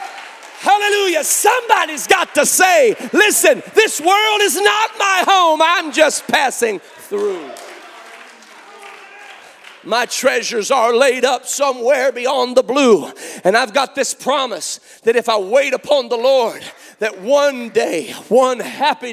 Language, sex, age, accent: English, male, 40-59, American